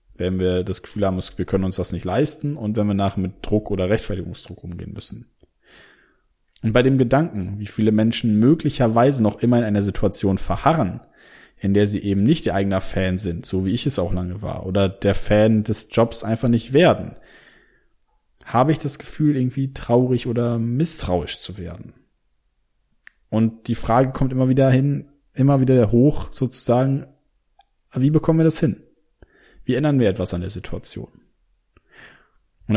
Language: German